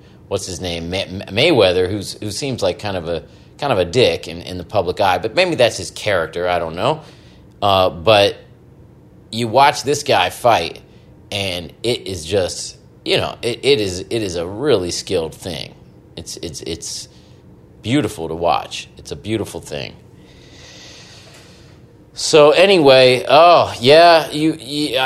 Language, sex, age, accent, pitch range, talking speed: English, male, 30-49, American, 85-115 Hz, 155 wpm